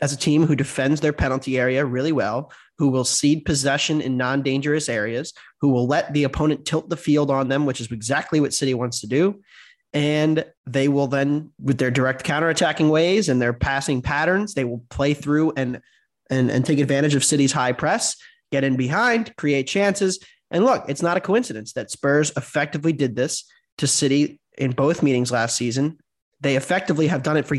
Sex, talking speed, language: male, 195 wpm, English